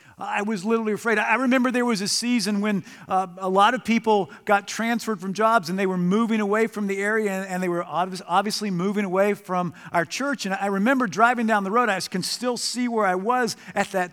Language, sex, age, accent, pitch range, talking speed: English, male, 50-69, American, 155-225 Hz, 225 wpm